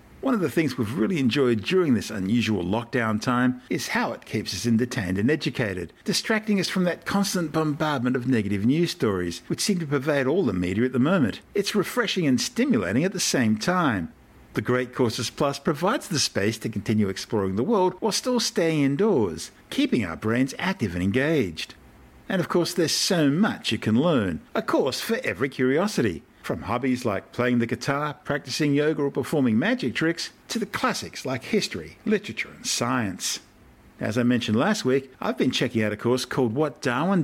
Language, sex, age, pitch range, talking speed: English, male, 50-69, 120-180 Hz, 190 wpm